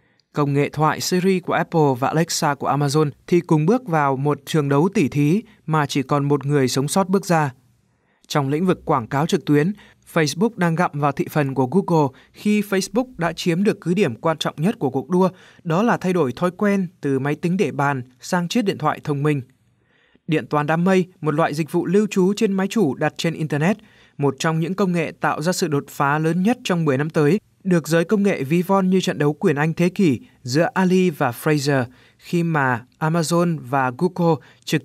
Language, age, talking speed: Vietnamese, 20-39, 220 wpm